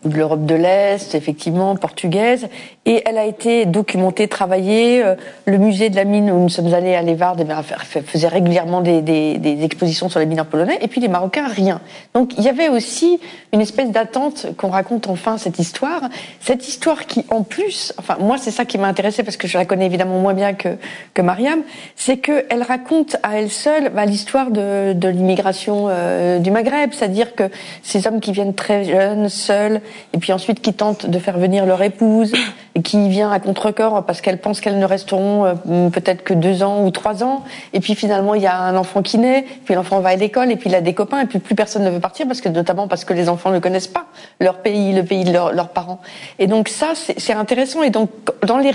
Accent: French